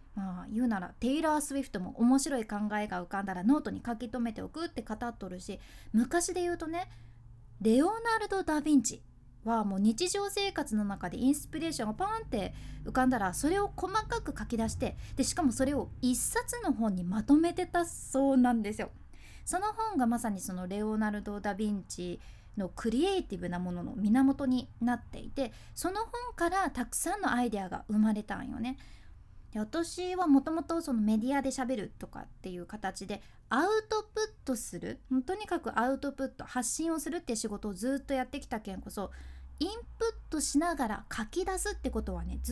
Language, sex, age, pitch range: Japanese, female, 20-39, 210-320 Hz